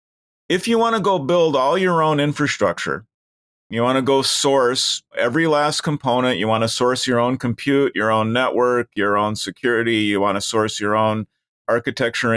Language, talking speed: English, 185 wpm